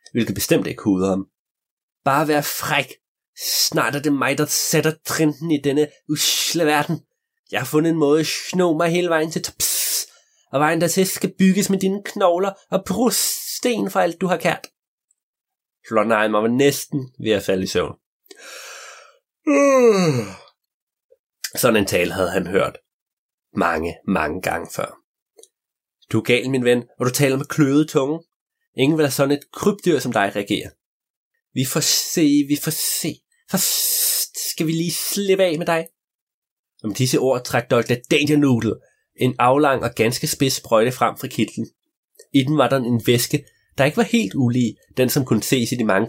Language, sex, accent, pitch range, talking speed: Danish, male, native, 130-185 Hz, 175 wpm